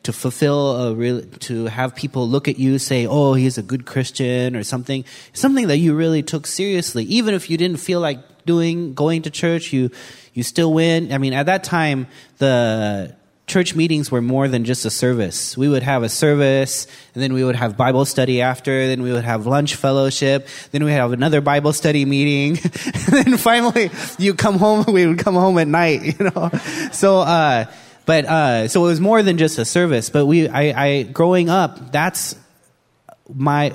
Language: English